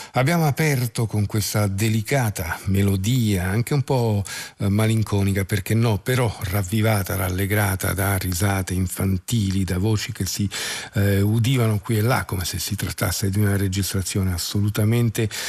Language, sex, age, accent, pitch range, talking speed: Italian, male, 50-69, native, 100-115 Hz, 135 wpm